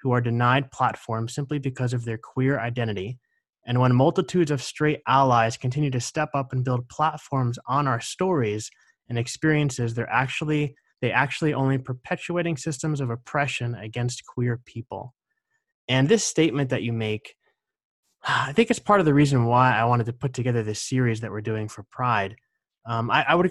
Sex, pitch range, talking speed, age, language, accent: male, 115-145 Hz, 180 wpm, 20-39, English, American